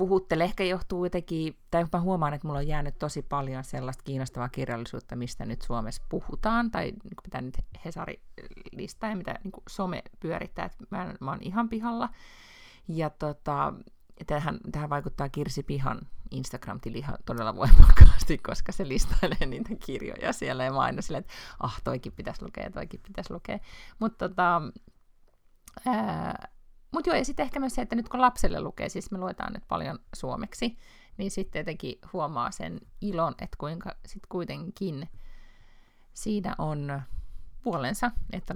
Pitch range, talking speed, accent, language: 145-210 Hz, 155 wpm, native, Finnish